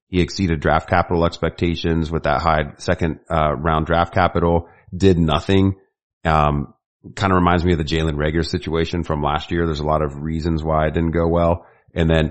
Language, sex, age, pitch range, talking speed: English, male, 30-49, 80-95 Hz, 195 wpm